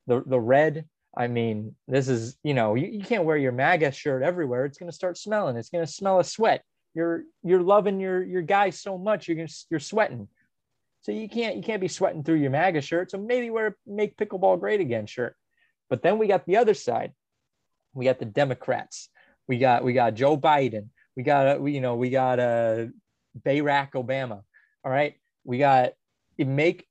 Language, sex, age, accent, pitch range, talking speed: English, male, 30-49, American, 135-195 Hz, 205 wpm